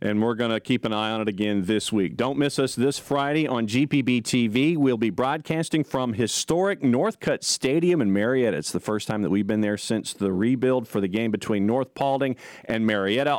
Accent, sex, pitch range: American, male, 110-140 Hz